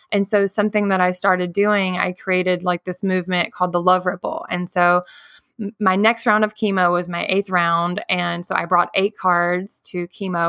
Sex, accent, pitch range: female, American, 180-205 Hz